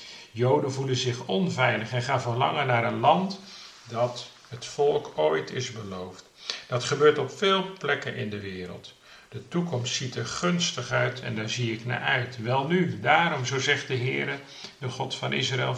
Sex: male